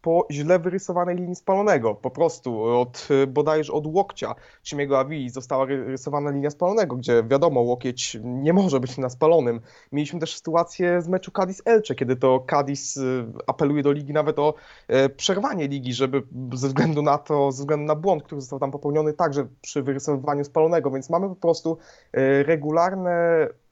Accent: native